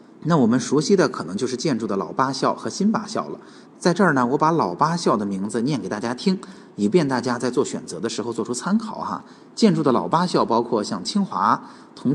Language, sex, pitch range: Chinese, male, 110-180 Hz